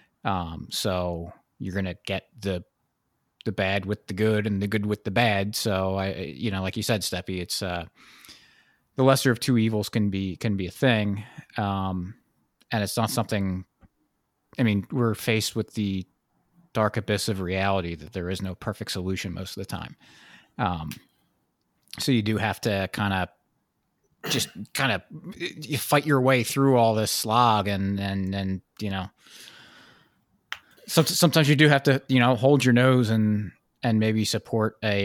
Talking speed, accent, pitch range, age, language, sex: 175 wpm, American, 100-120 Hz, 30-49, English, male